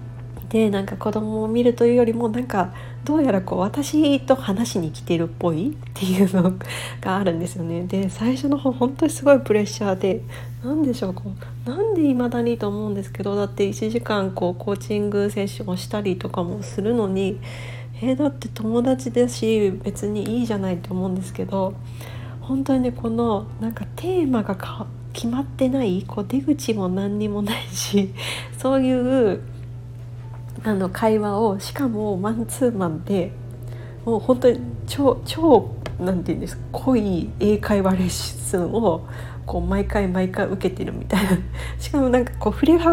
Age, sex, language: 40-59, female, Japanese